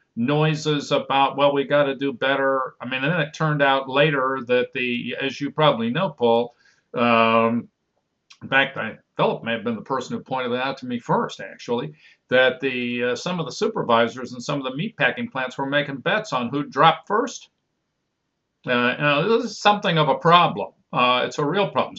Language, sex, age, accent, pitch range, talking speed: English, male, 50-69, American, 125-160 Hz, 205 wpm